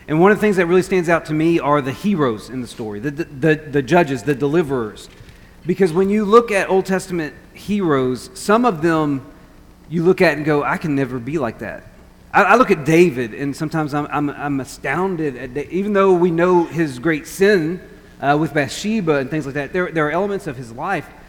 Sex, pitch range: male, 150-195 Hz